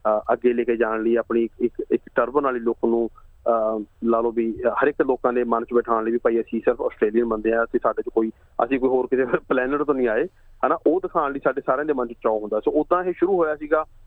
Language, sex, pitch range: Punjabi, male, 115-135 Hz